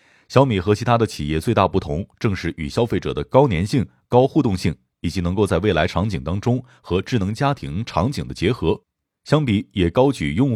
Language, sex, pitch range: Chinese, male, 90-125 Hz